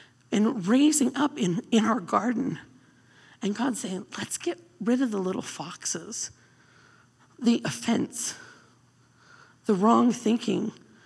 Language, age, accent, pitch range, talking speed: English, 40-59, American, 230-315 Hz, 120 wpm